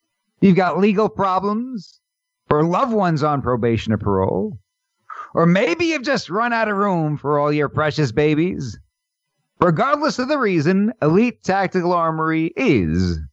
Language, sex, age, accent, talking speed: English, male, 50-69, American, 145 wpm